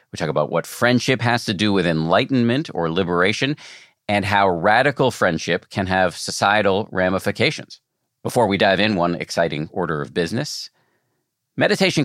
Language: English